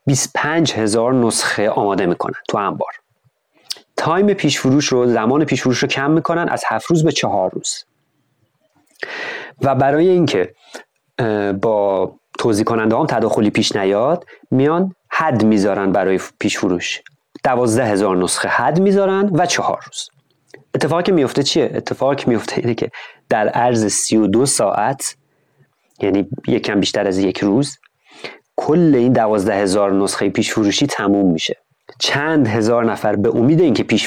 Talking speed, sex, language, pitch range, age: 135 wpm, male, Persian, 105-145 Hz, 30-49